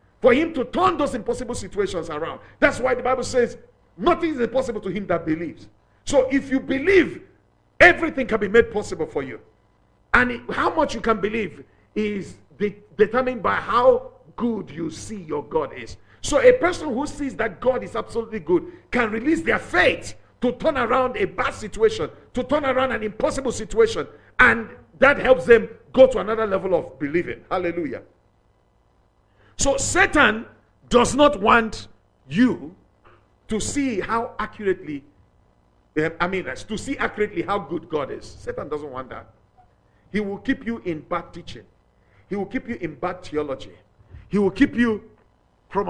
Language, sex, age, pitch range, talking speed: English, male, 50-69, 165-260 Hz, 165 wpm